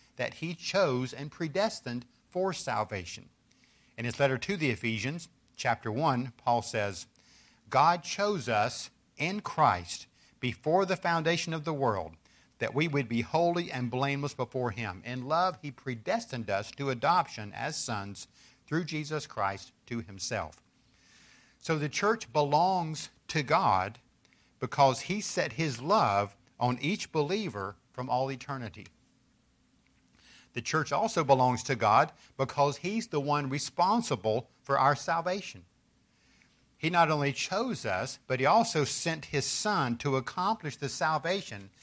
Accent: American